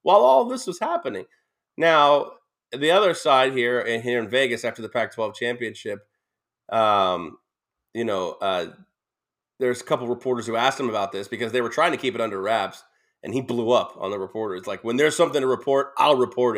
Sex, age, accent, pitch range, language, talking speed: male, 30-49, American, 115-170 Hz, English, 200 wpm